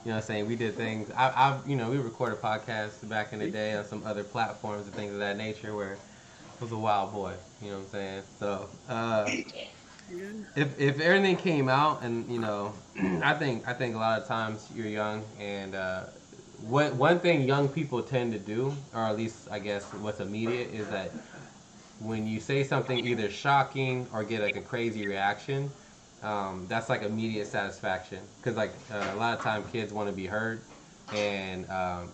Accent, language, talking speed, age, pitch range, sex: American, English, 205 wpm, 20-39, 105-130 Hz, male